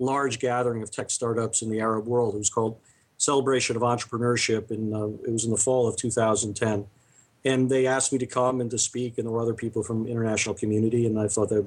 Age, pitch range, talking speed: 40-59, 115-135 Hz, 230 wpm